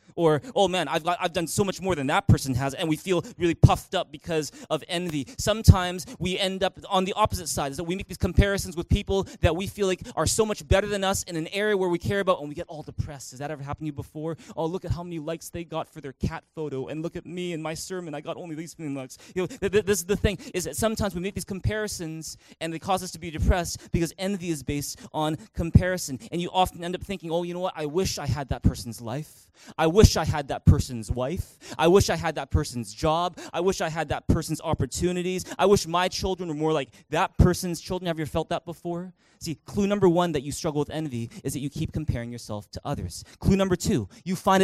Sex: male